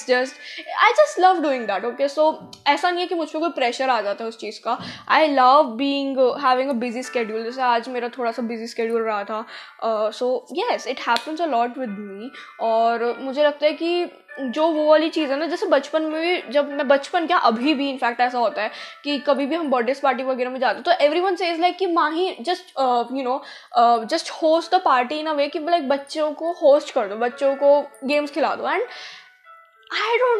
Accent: native